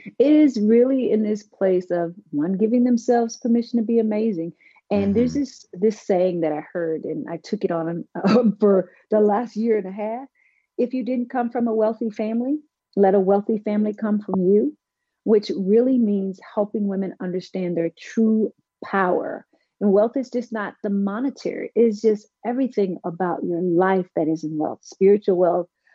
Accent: American